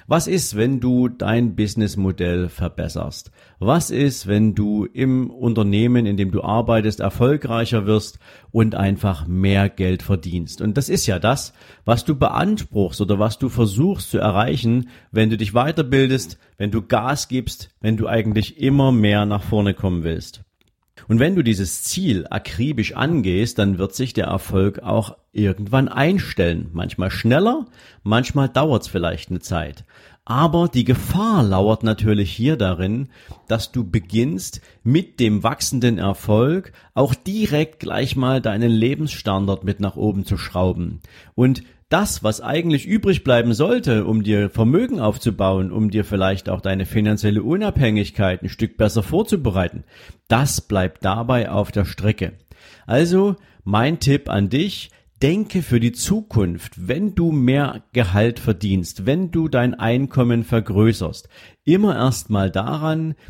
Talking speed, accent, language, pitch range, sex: 145 wpm, German, German, 100-135 Hz, male